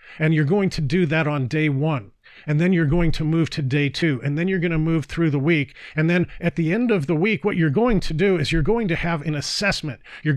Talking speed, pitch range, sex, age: 280 wpm, 150-185 Hz, male, 40-59